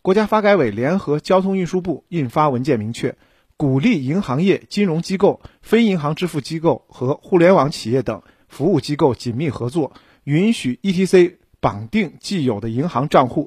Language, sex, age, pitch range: Chinese, male, 50-69, 125-185 Hz